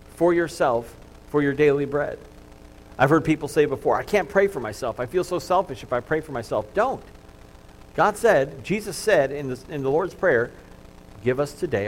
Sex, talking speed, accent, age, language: male, 190 wpm, American, 50-69, English